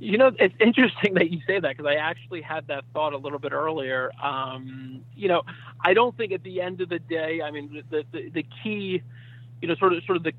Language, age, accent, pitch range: English, 30-49, American, 135-160 Hz